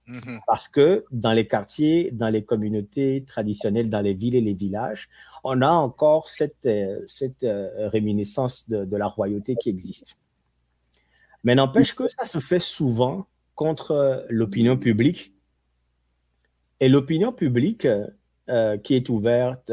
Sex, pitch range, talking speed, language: male, 105-130 Hz, 135 wpm, French